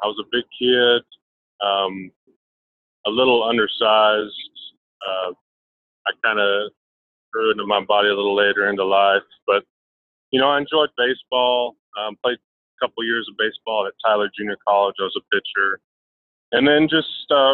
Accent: American